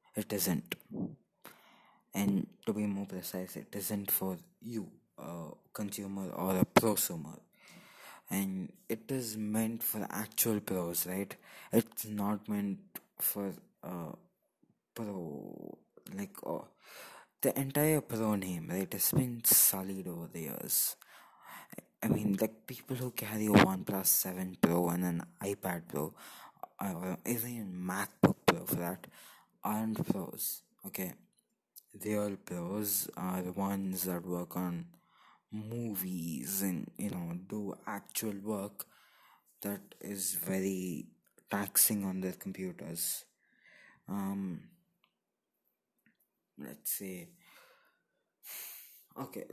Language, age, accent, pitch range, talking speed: English, 20-39, Indian, 95-110 Hz, 115 wpm